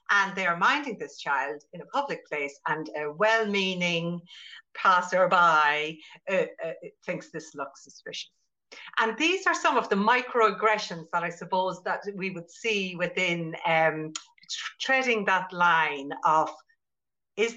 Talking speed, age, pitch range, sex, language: 140 wpm, 60-79, 175-260 Hz, female, English